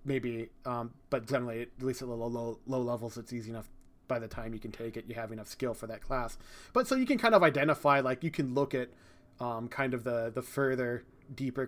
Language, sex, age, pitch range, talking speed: English, male, 30-49, 120-140 Hz, 240 wpm